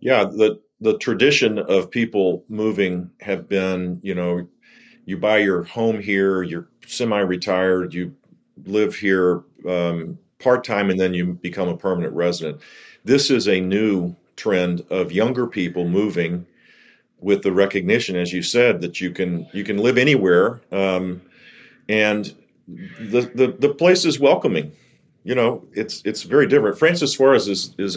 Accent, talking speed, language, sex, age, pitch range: American, 155 wpm, English, male, 40-59, 90-115 Hz